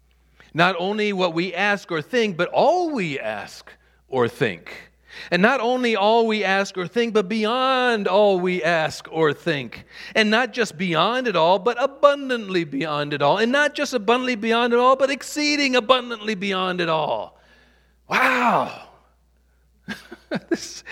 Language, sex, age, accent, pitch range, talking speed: English, male, 50-69, American, 135-215 Hz, 155 wpm